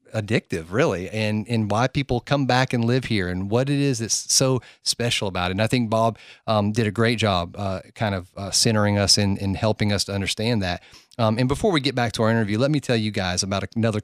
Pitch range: 100-120 Hz